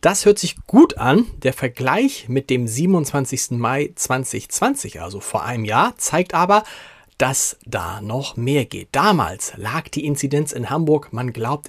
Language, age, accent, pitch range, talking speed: German, 40-59, German, 125-165 Hz, 160 wpm